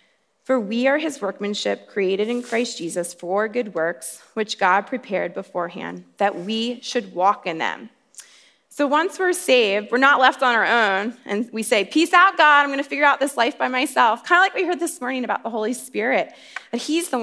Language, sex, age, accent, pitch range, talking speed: English, female, 20-39, American, 200-265 Hz, 210 wpm